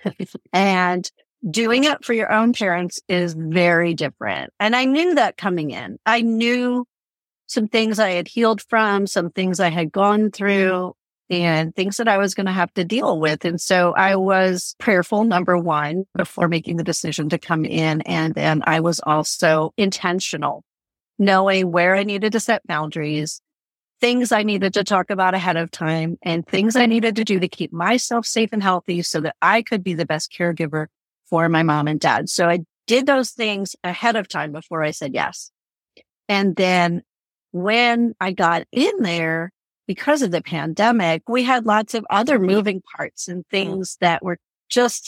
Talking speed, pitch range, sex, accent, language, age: 180 wpm, 170-220 Hz, female, American, English, 50-69